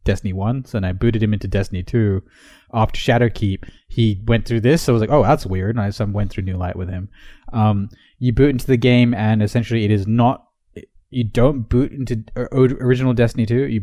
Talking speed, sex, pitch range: 220 wpm, male, 100-125 Hz